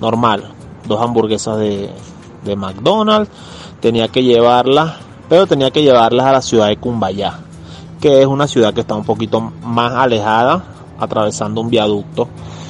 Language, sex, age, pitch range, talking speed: Spanish, male, 30-49, 110-155 Hz, 145 wpm